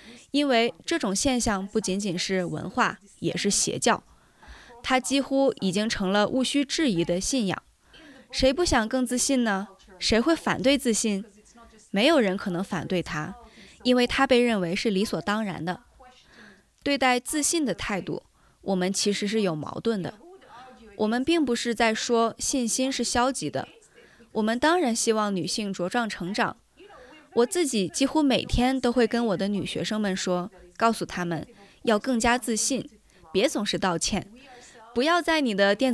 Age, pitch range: 20-39, 195-255 Hz